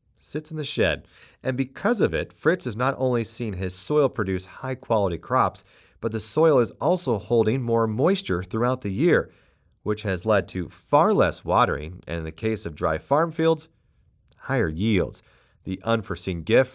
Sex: male